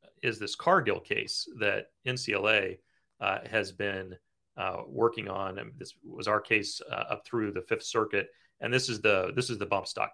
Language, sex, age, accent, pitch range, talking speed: English, male, 30-49, American, 100-120 Hz, 180 wpm